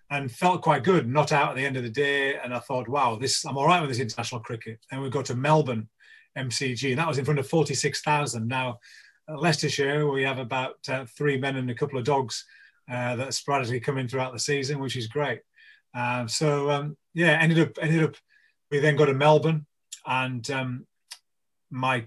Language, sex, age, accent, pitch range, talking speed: English, male, 30-49, British, 125-145 Hz, 215 wpm